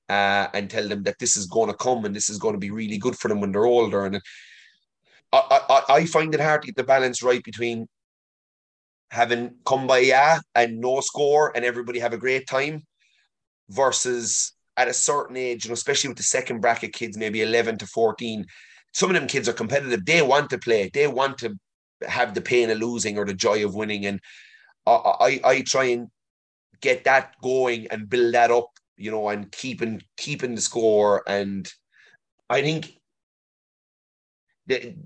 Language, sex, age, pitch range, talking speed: English, male, 30-49, 105-130 Hz, 190 wpm